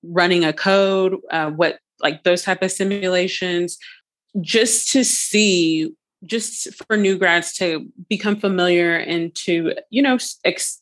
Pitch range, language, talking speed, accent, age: 170-195 Hz, English, 140 wpm, American, 20-39